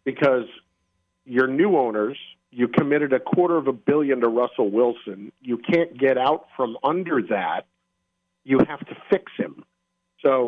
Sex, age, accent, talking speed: male, 50-69, American, 155 wpm